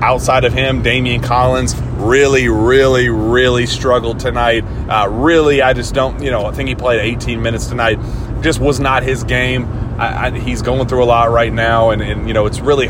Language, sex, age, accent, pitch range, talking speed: English, male, 30-49, American, 115-130 Hz, 205 wpm